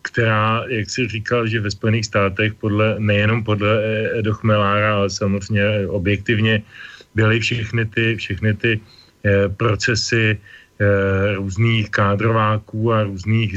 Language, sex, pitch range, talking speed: Slovak, male, 105-115 Hz, 120 wpm